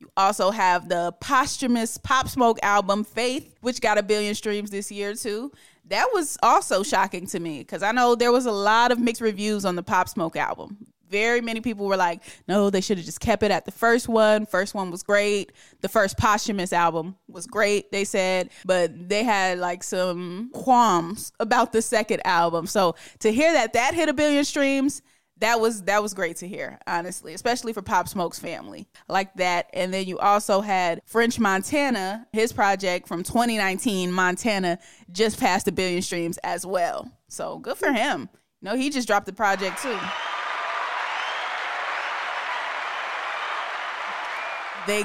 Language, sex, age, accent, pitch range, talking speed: English, female, 20-39, American, 185-230 Hz, 175 wpm